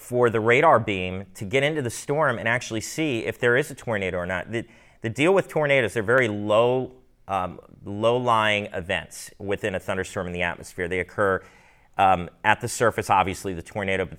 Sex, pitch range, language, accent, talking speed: male, 95-115 Hz, English, American, 190 wpm